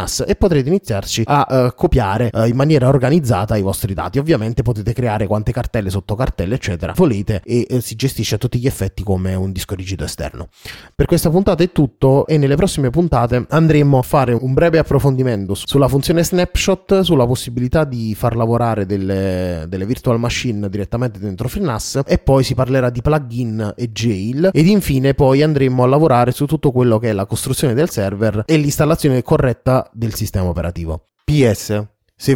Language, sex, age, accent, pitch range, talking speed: Italian, male, 20-39, native, 105-145 Hz, 170 wpm